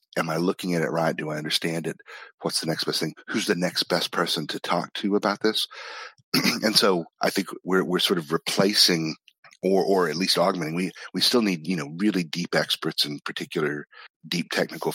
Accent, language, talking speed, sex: American, English, 210 wpm, male